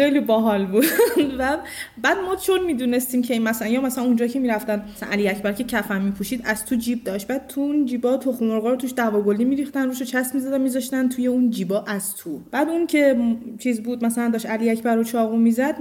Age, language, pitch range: 20-39, Persian, 215-270 Hz